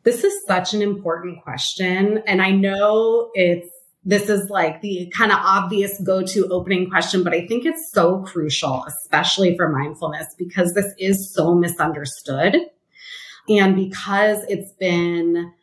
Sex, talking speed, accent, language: female, 145 wpm, American, English